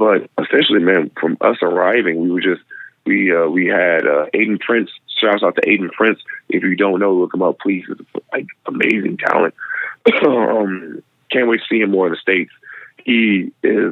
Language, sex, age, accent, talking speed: English, male, 30-49, American, 195 wpm